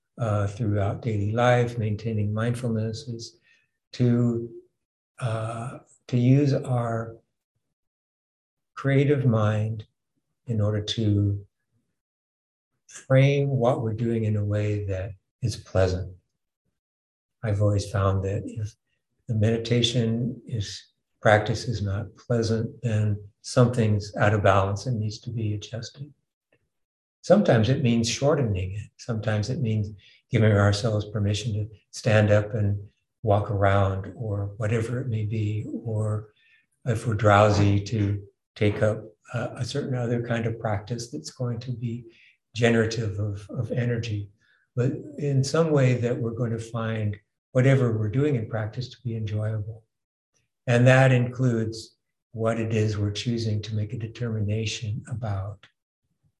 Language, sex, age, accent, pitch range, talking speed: English, male, 60-79, American, 105-120 Hz, 130 wpm